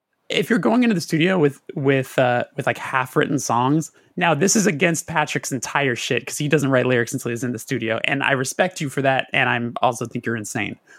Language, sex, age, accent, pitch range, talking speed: English, male, 20-39, American, 125-155 Hz, 235 wpm